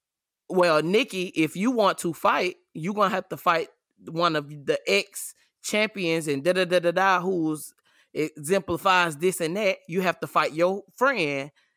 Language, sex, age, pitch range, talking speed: English, male, 20-39, 150-185 Hz, 175 wpm